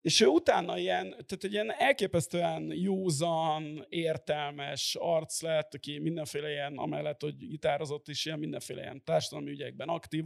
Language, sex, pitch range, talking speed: Hungarian, male, 155-185 Hz, 145 wpm